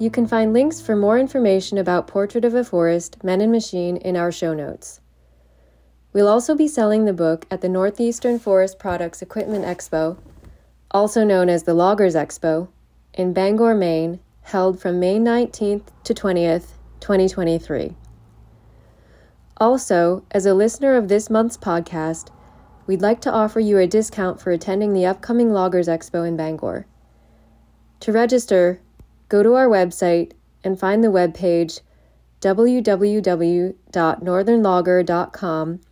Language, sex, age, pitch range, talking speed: English, female, 20-39, 170-215 Hz, 135 wpm